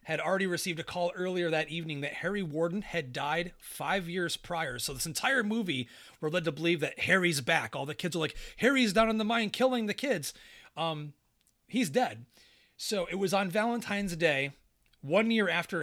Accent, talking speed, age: American, 195 wpm, 30-49